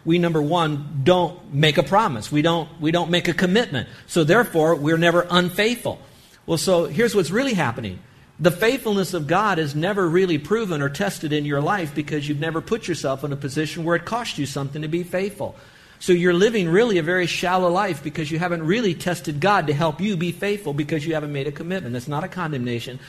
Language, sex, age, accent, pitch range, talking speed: English, male, 50-69, American, 145-195 Hz, 215 wpm